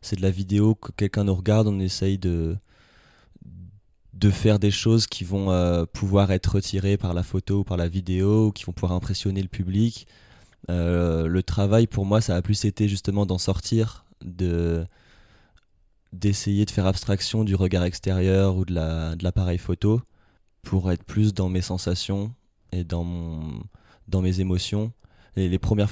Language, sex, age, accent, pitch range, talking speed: French, male, 20-39, French, 90-105 Hz, 175 wpm